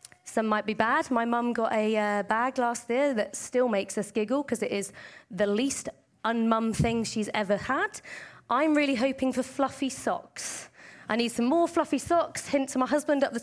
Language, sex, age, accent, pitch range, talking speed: English, female, 20-39, British, 205-250 Hz, 200 wpm